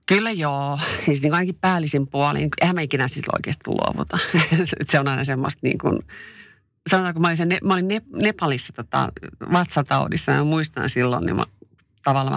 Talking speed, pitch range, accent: 160 wpm, 135-175 Hz, native